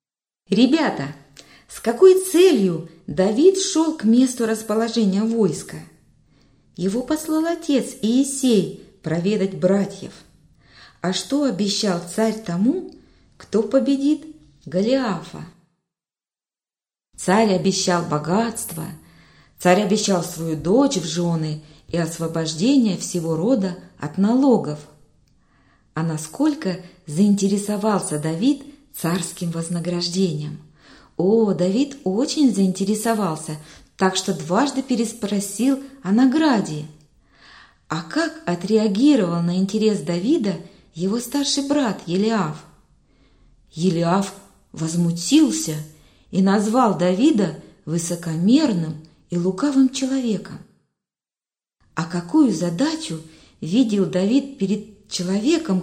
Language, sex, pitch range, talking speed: Russian, female, 175-250 Hz, 85 wpm